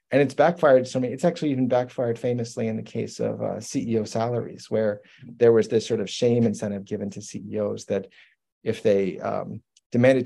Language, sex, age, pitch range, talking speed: English, male, 40-59, 110-145 Hz, 195 wpm